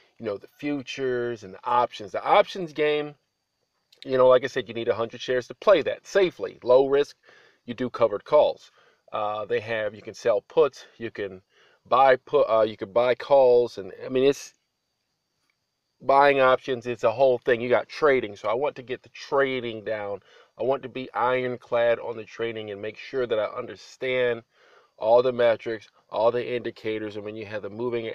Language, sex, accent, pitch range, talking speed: English, male, American, 110-135 Hz, 195 wpm